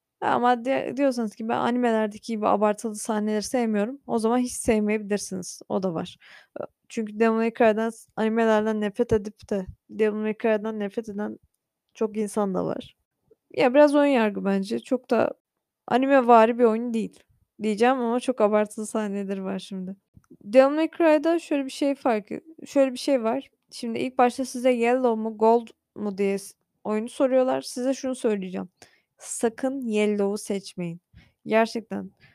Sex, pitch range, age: female, 210-265 Hz, 10-29